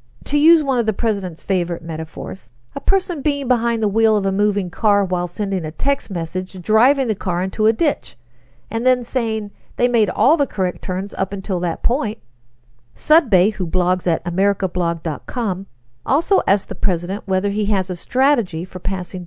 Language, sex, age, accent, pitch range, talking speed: English, female, 50-69, American, 175-235 Hz, 180 wpm